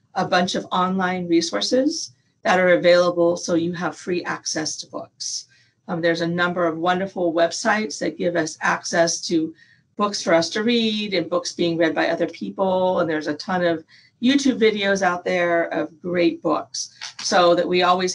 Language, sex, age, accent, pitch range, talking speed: English, female, 40-59, American, 170-220 Hz, 180 wpm